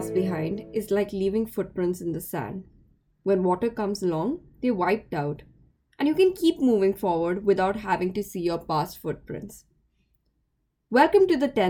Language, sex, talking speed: English, female, 160 wpm